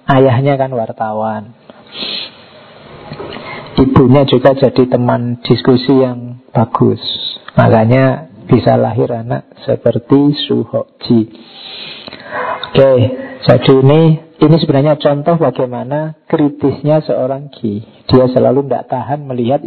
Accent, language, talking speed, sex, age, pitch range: native, Indonesian, 100 wpm, male, 40-59, 125-150 Hz